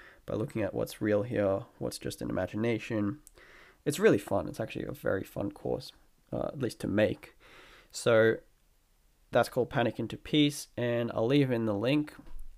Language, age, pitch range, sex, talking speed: English, 20-39, 110-140 Hz, male, 170 wpm